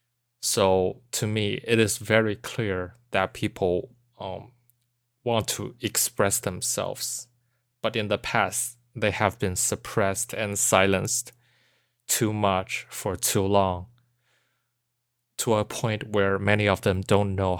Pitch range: 95-120 Hz